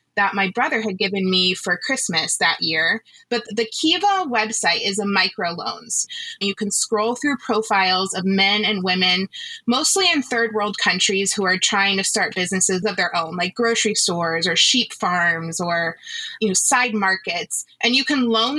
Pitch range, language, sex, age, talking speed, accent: 195-250 Hz, English, female, 20-39, 180 wpm, American